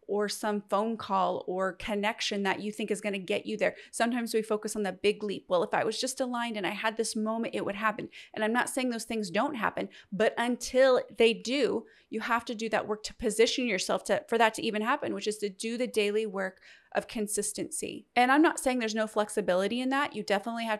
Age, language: 30-49, English